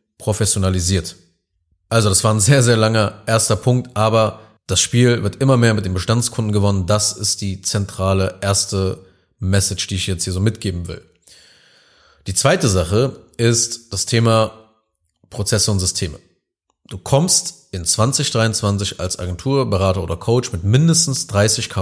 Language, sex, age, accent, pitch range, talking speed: German, male, 30-49, German, 95-120 Hz, 145 wpm